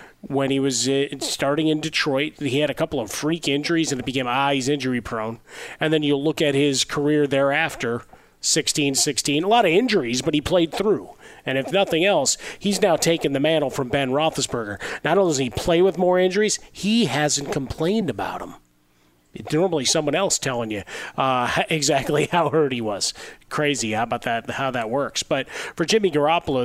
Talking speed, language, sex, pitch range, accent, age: 190 wpm, English, male, 130-160 Hz, American, 30-49